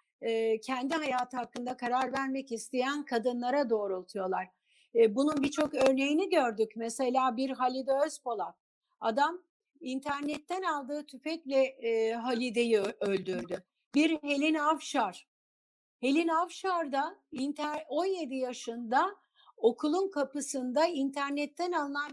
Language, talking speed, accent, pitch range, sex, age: Turkish, 90 wpm, native, 245-300 Hz, female, 60-79